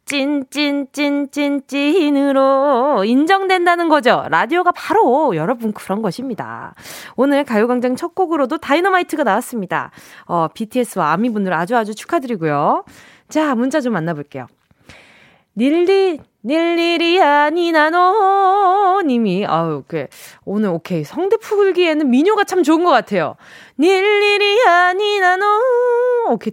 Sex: female